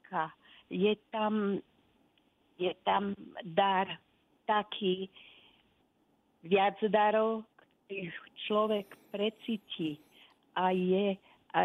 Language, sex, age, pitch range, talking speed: Slovak, female, 40-59, 190-220 Hz, 70 wpm